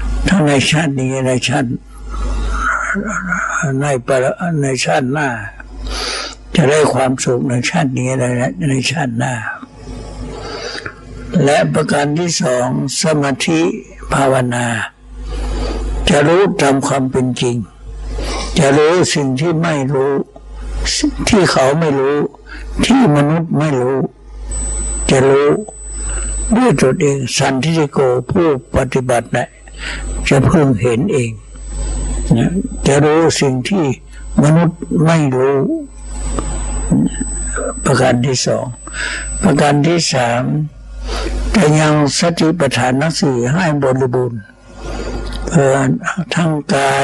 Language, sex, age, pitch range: Thai, male, 60-79, 130-155 Hz